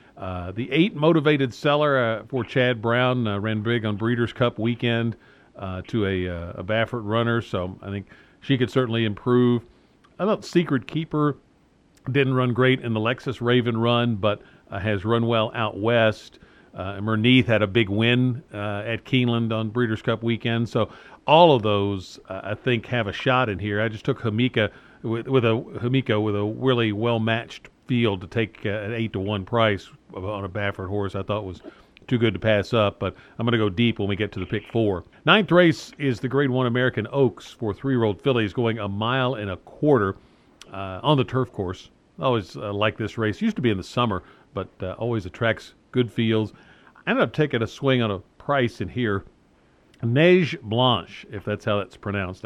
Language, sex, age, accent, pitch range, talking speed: English, male, 50-69, American, 105-125 Hz, 195 wpm